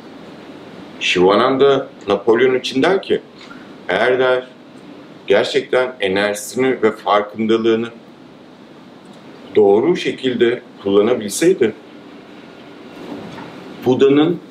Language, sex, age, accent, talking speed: Turkish, male, 60-79, native, 65 wpm